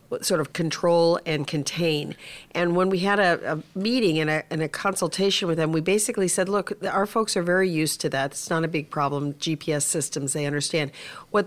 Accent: American